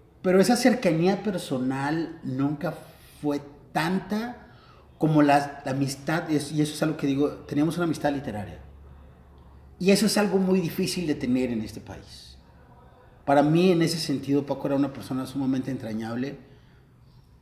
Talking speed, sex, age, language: 150 wpm, male, 30-49, Spanish